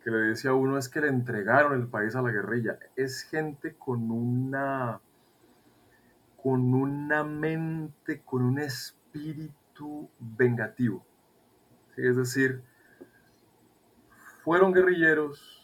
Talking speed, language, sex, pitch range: 115 wpm, Spanish, male, 125-155 Hz